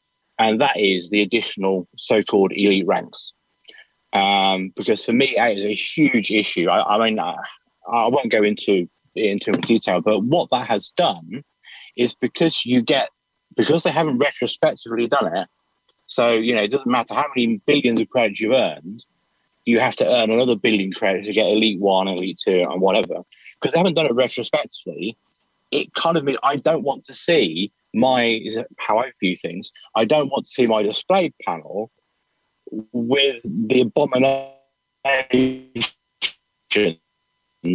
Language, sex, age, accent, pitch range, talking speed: English, male, 30-49, British, 105-140 Hz, 165 wpm